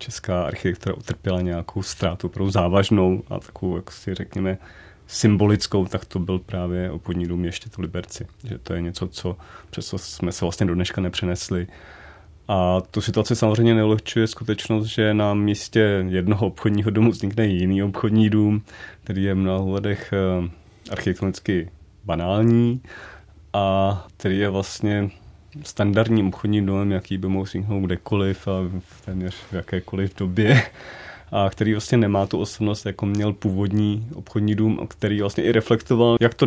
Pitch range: 95-110 Hz